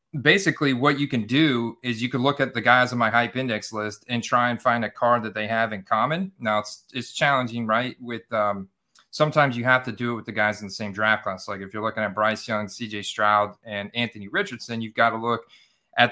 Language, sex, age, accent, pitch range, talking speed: English, male, 30-49, American, 110-135 Hz, 245 wpm